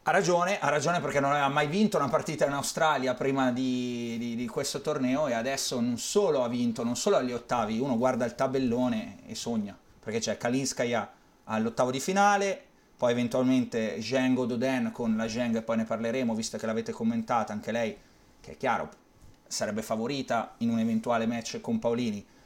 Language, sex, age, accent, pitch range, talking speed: Italian, male, 30-49, native, 120-160 Hz, 185 wpm